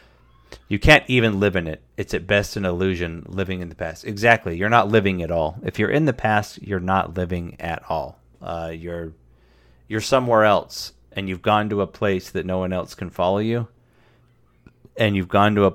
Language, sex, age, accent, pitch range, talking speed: English, male, 30-49, American, 85-110 Hz, 205 wpm